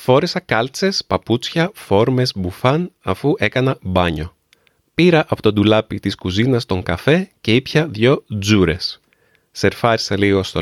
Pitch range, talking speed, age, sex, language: 100-140 Hz, 130 wpm, 30-49, male, Greek